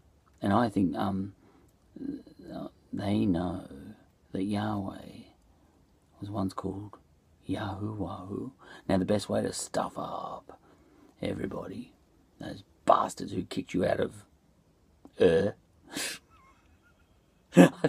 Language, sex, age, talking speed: English, male, 40-59, 95 wpm